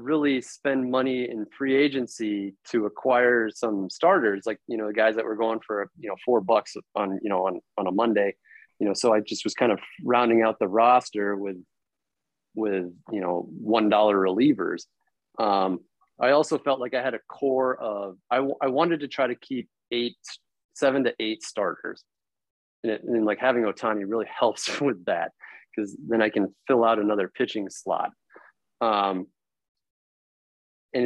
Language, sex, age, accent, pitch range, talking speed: English, male, 30-49, American, 105-130 Hz, 180 wpm